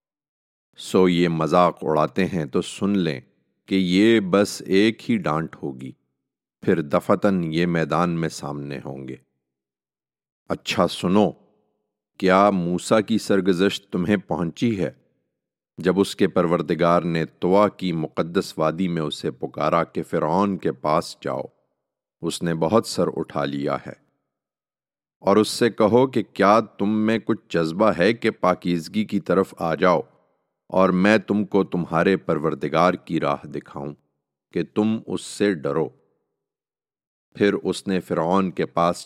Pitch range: 80-100 Hz